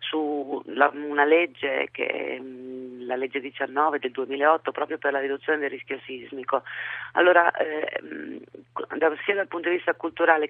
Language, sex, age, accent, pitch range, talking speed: Italian, female, 40-59, native, 140-165 Hz, 145 wpm